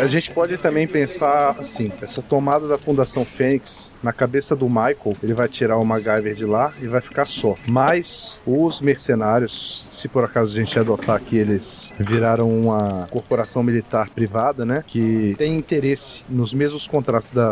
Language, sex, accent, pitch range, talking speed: Portuguese, male, Brazilian, 115-135 Hz, 170 wpm